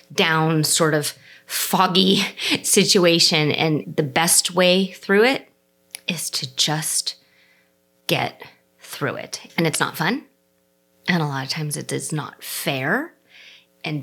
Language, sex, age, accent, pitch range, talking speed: English, female, 30-49, American, 150-180 Hz, 135 wpm